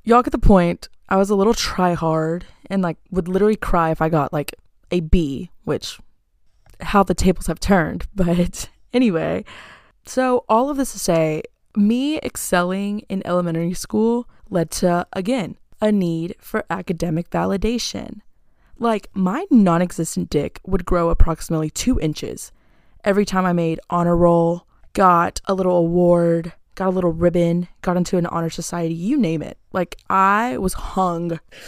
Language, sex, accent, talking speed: English, female, American, 155 wpm